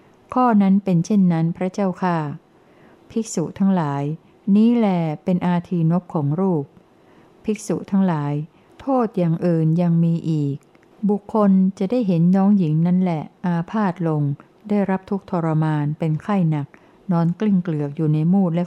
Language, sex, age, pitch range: Thai, female, 60-79, 160-195 Hz